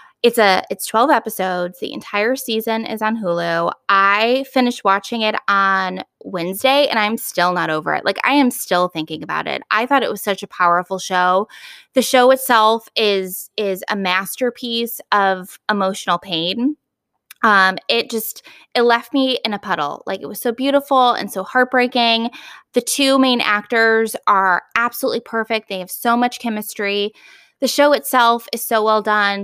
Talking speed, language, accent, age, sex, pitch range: 170 wpm, English, American, 20-39, female, 195-250 Hz